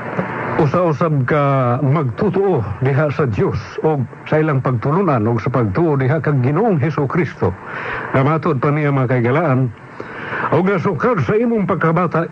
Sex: male